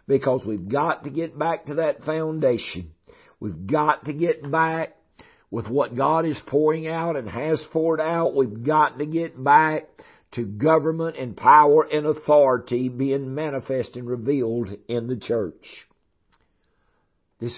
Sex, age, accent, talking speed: male, 60-79, American, 145 wpm